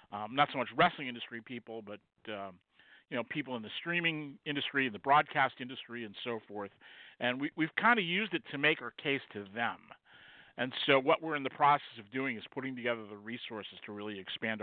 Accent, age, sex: American, 40-59, male